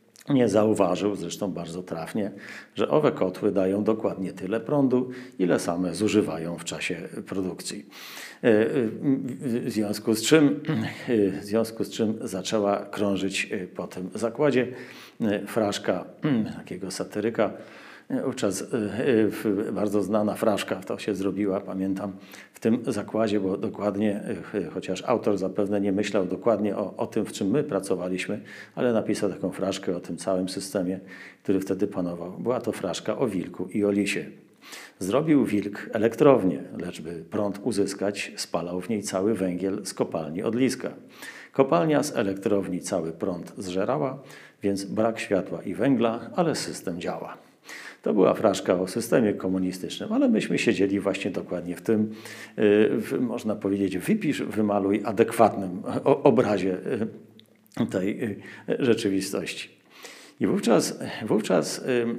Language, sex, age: Polish, male, 40-59